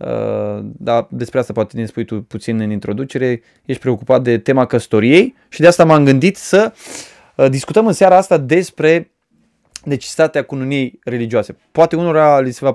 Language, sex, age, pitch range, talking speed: Romanian, male, 20-39, 120-165 Hz, 160 wpm